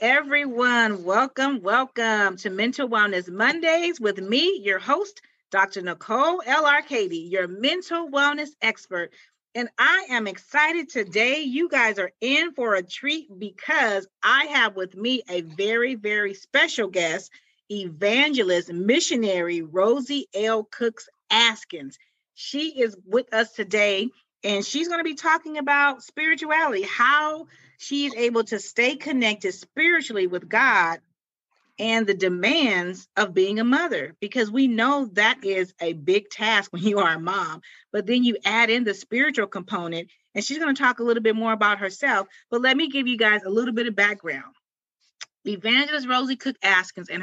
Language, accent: English, American